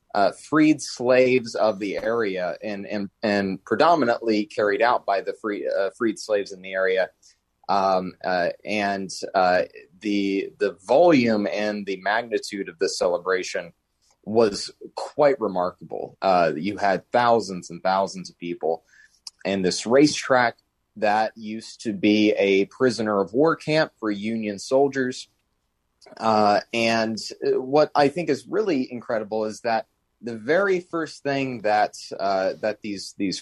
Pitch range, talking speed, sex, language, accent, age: 95-130 Hz, 140 wpm, male, English, American, 30-49